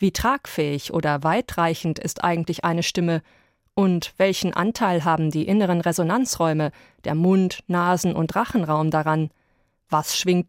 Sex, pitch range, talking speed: female, 165-210 Hz, 130 wpm